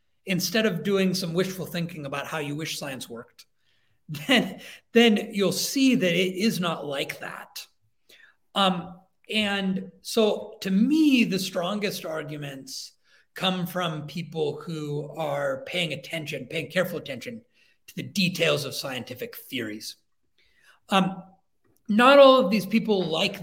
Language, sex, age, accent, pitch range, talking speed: English, male, 40-59, American, 135-190 Hz, 135 wpm